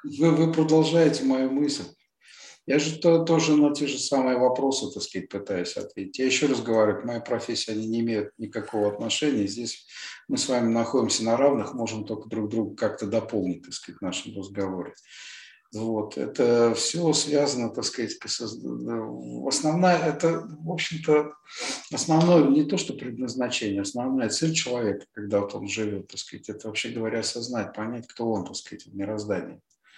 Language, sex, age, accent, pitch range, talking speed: Russian, male, 50-69, native, 110-140 Hz, 165 wpm